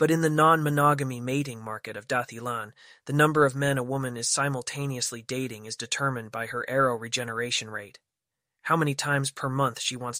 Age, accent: 30-49, American